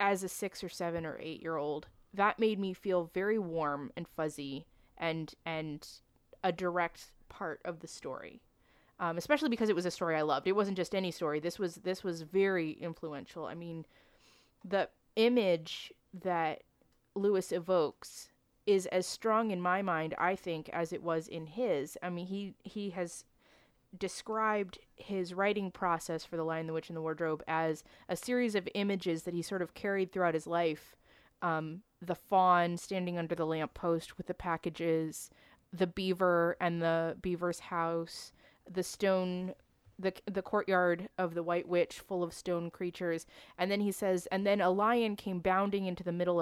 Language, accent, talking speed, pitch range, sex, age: English, American, 175 wpm, 165-195 Hz, female, 20-39